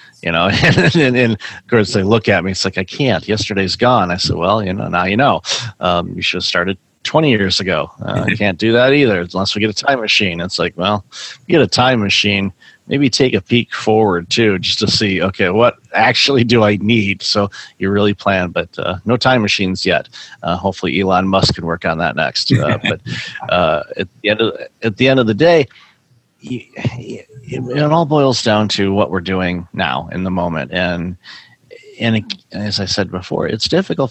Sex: male